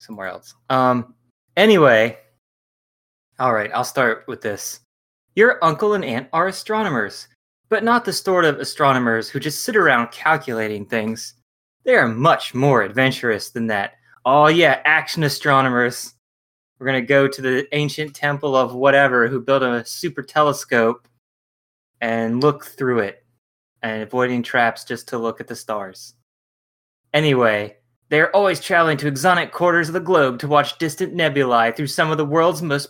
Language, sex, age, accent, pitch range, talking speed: English, male, 20-39, American, 120-160 Hz, 160 wpm